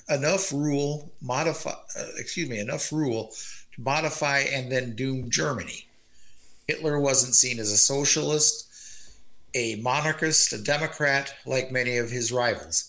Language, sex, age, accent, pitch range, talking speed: English, male, 50-69, American, 125-155 Hz, 135 wpm